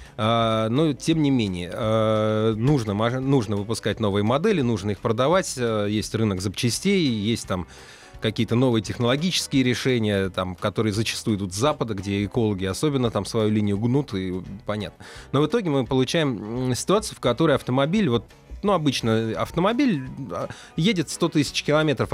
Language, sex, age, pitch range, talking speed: Russian, male, 30-49, 105-145 Hz, 140 wpm